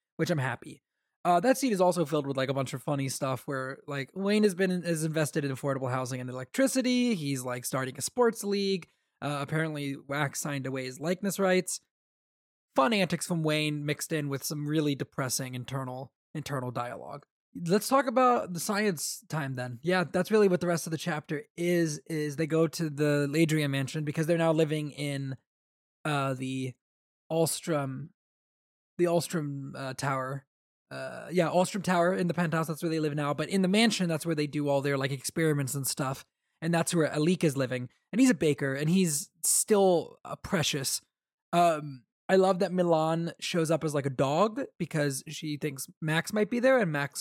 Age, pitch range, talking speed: 20-39, 140-175 Hz, 195 wpm